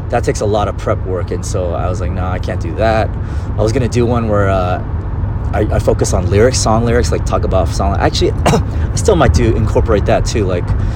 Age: 30-49